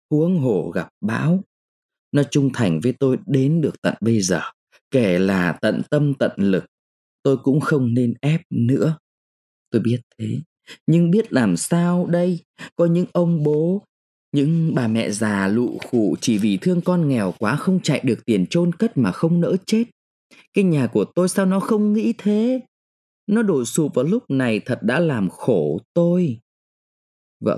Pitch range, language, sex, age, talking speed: 125-190 Hz, Vietnamese, male, 20-39, 175 wpm